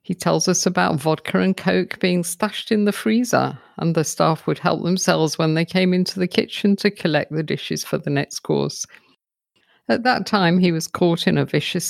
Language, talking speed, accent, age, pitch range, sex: English, 205 wpm, British, 50-69, 165-205 Hz, female